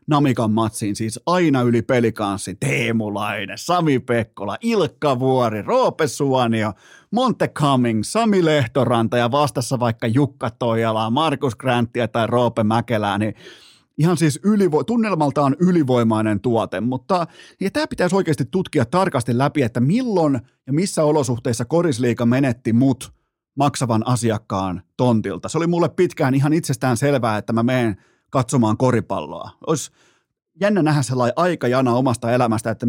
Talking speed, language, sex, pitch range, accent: 135 wpm, Finnish, male, 115-155 Hz, native